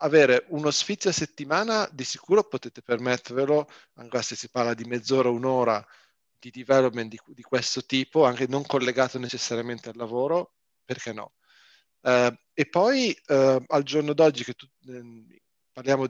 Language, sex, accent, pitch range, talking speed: Italian, male, native, 120-135 Hz, 155 wpm